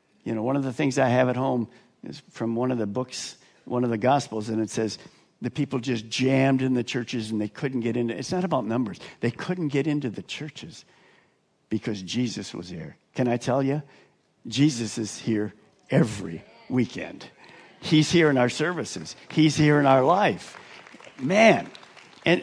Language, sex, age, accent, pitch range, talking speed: English, male, 50-69, American, 125-160 Hz, 185 wpm